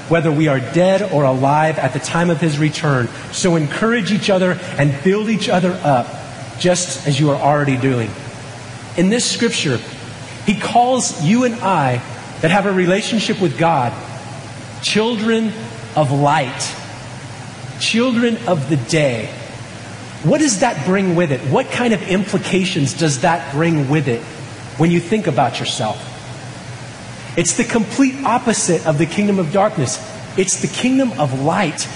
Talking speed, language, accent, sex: 155 wpm, English, American, male